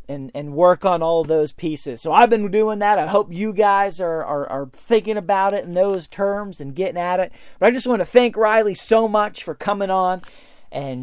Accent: American